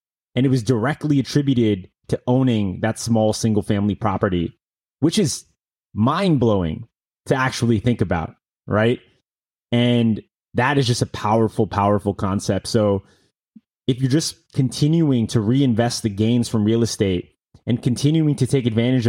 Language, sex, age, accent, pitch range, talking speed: English, male, 30-49, American, 110-135 Hz, 145 wpm